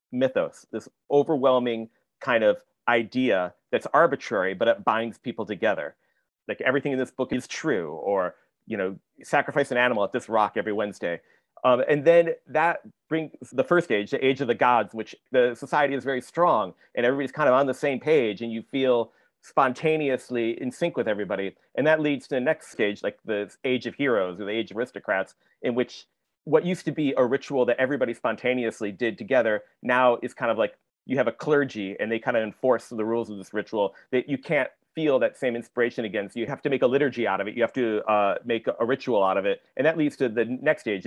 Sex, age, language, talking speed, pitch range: male, 40-59, English, 220 wpm, 115-145 Hz